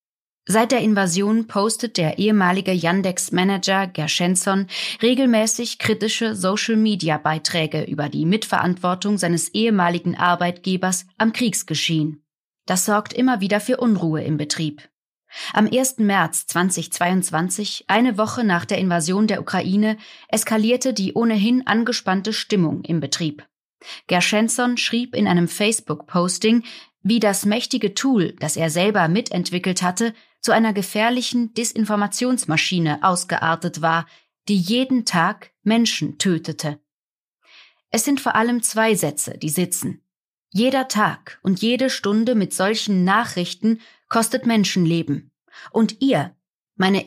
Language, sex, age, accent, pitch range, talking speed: German, female, 20-39, German, 170-225 Hz, 115 wpm